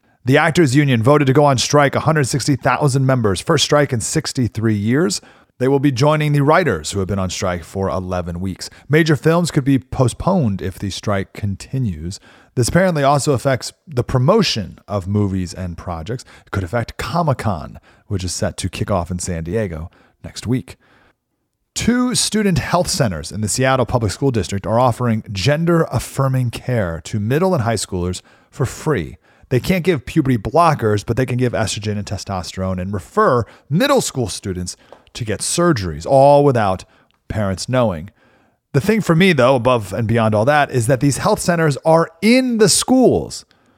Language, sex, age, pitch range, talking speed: English, male, 40-59, 105-155 Hz, 175 wpm